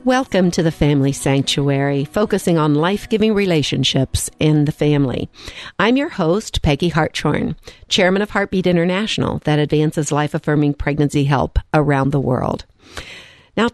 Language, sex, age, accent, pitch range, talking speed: English, female, 50-69, American, 155-210 Hz, 140 wpm